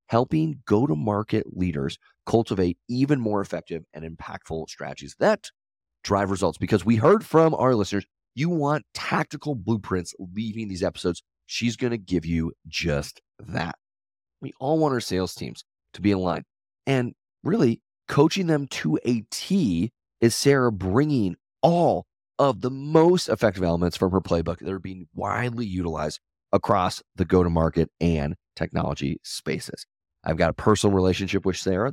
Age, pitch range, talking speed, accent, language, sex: 30-49, 85-120 Hz, 150 wpm, American, English, male